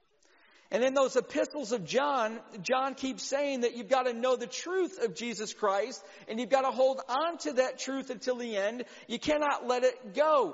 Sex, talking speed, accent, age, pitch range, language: male, 205 wpm, American, 50-69, 245-295 Hz, English